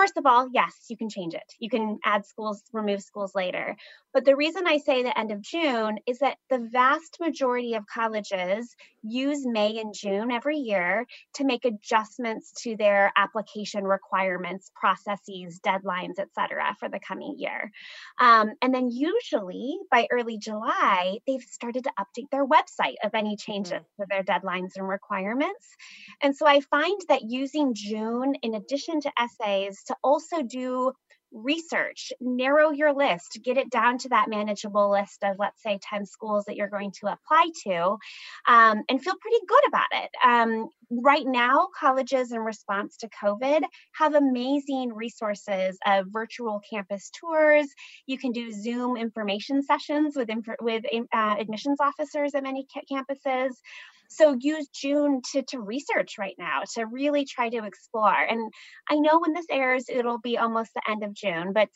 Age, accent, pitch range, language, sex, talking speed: 20-39, American, 210-285 Hz, English, female, 165 wpm